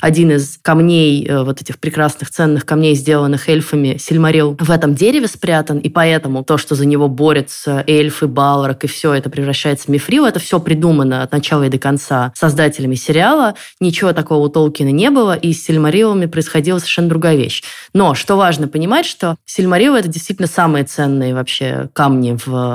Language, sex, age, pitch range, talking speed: Russian, female, 20-39, 140-170 Hz, 175 wpm